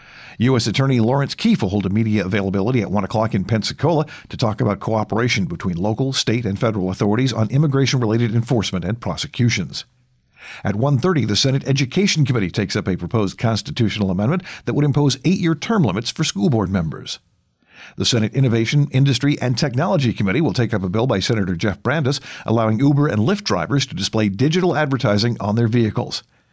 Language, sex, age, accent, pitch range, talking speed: English, male, 50-69, American, 105-140 Hz, 180 wpm